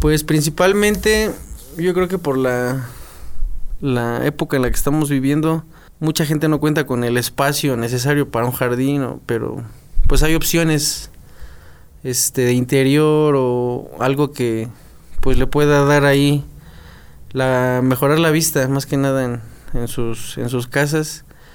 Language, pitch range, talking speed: Spanish, 125-150 Hz, 150 wpm